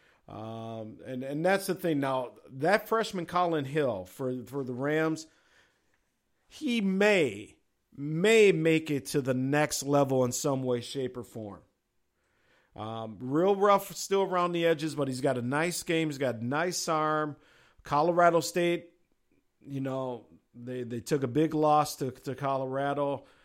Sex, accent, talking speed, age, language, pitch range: male, American, 155 wpm, 50-69, English, 125-165 Hz